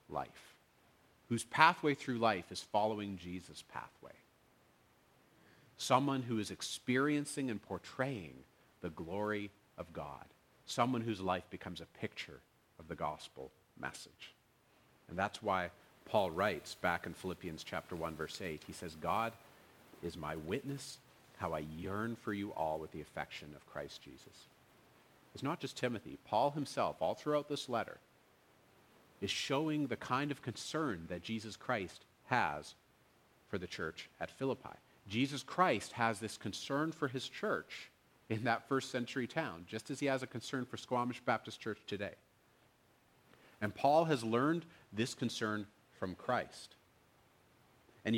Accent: American